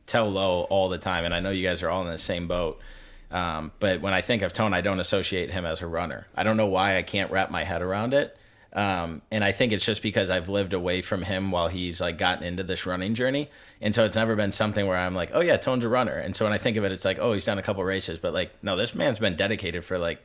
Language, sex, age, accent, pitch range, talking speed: English, male, 20-39, American, 85-100 Hz, 295 wpm